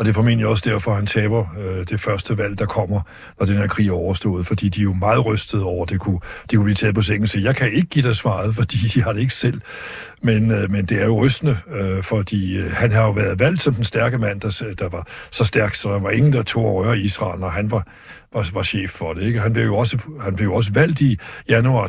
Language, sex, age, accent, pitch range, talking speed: Danish, male, 60-79, native, 100-120 Hz, 275 wpm